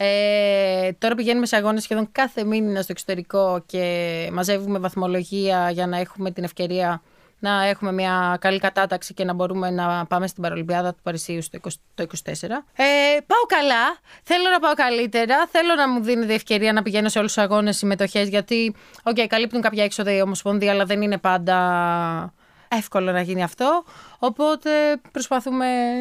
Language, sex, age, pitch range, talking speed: Greek, female, 20-39, 185-245 Hz, 165 wpm